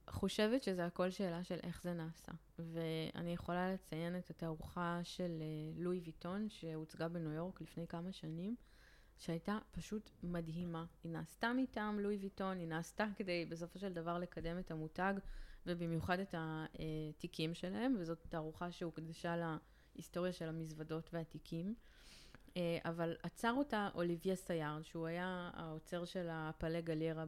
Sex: female